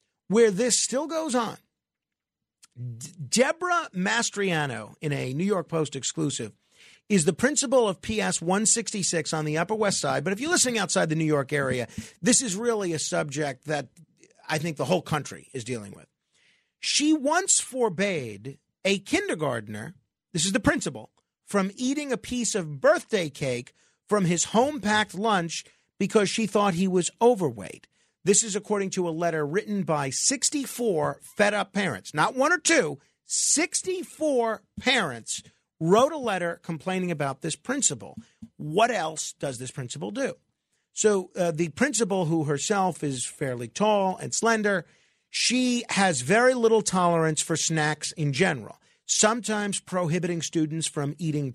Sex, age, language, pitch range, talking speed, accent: male, 50-69, English, 155-225 Hz, 150 wpm, American